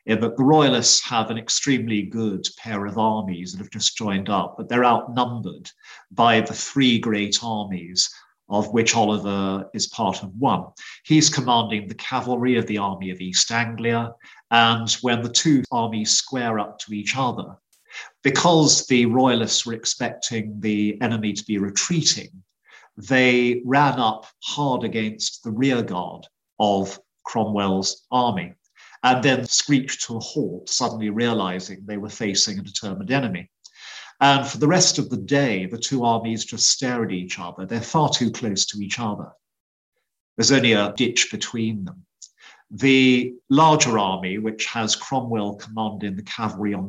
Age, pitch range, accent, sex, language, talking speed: 50-69, 105-125 Hz, British, male, English, 155 wpm